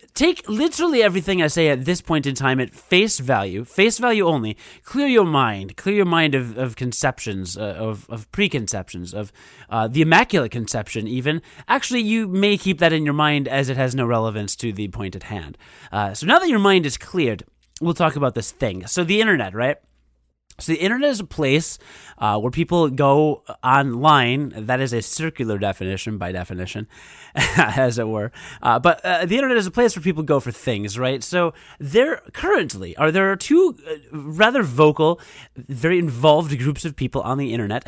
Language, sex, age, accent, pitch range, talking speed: English, male, 30-49, American, 115-180 Hz, 190 wpm